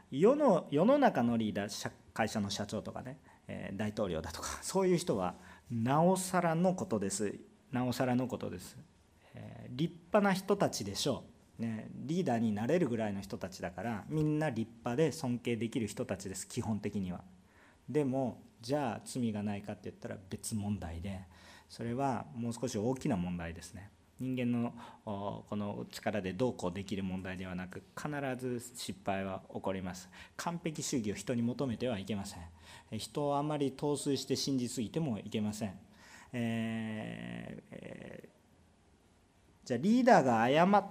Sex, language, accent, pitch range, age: male, Japanese, native, 100-145 Hz, 40-59